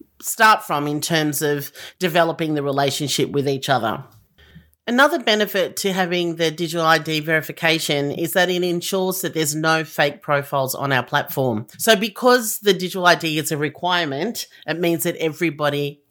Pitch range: 145-175 Hz